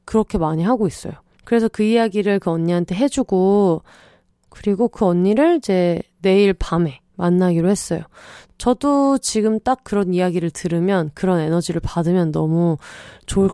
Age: 20-39